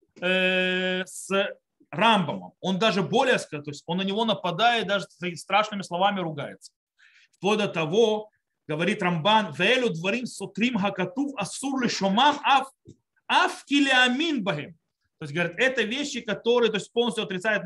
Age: 30-49